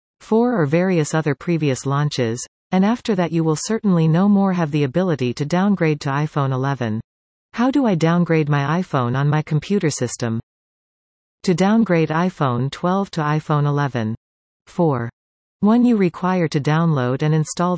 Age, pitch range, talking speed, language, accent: 40-59, 130-175 Hz, 160 wpm, English, American